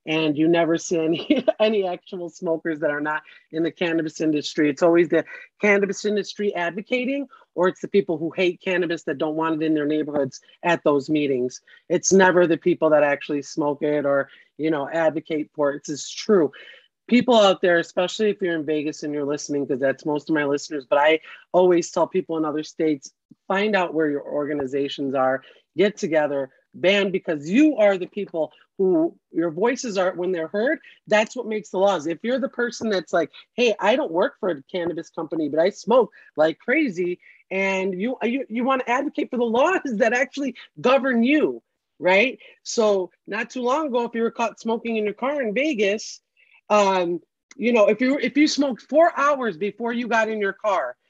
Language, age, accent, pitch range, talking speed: English, 40-59, American, 160-235 Hz, 200 wpm